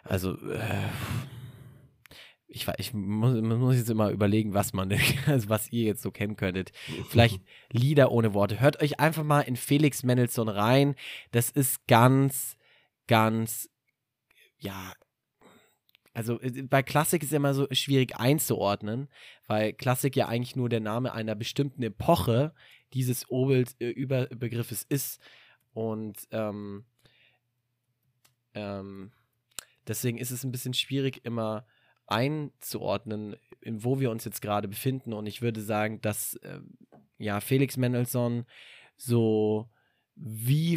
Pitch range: 105-130 Hz